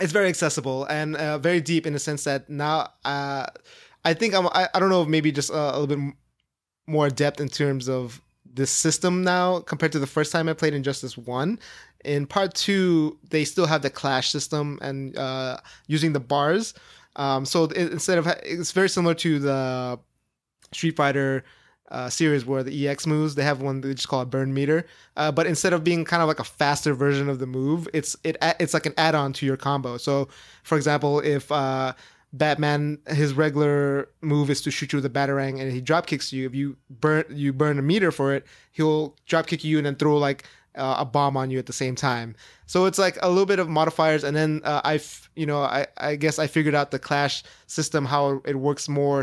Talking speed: 225 wpm